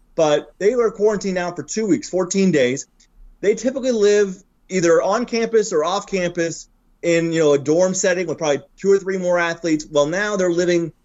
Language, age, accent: English, 30-49, American